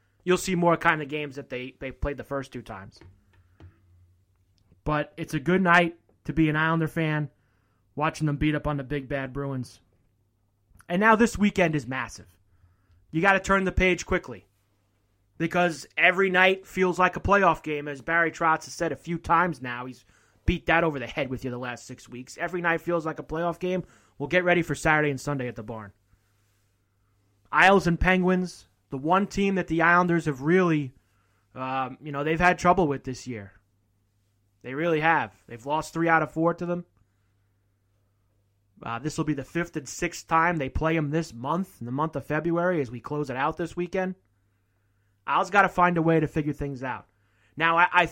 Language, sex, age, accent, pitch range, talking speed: English, male, 20-39, American, 105-170 Hz, 200 wpm